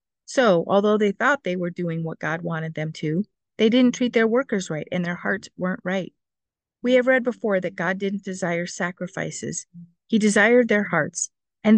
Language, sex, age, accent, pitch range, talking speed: English, female, 50-69, American, 180-240 Hz, 190 wpm